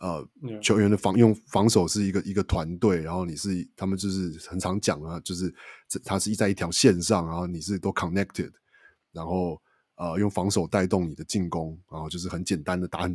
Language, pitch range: Chinese, 90-110 Hz